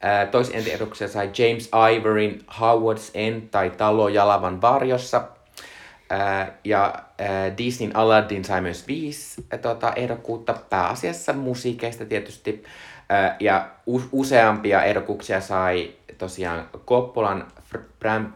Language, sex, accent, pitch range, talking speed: Finnish, male, native, 95-120 Hz, 95 wpm